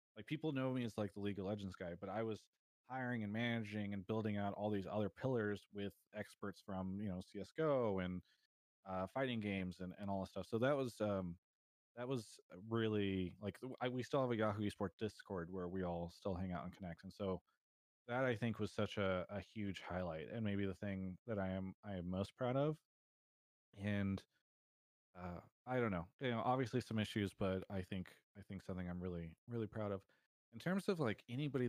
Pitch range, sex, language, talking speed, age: 95-115 Hz, male, English, 215 wpm, 20-39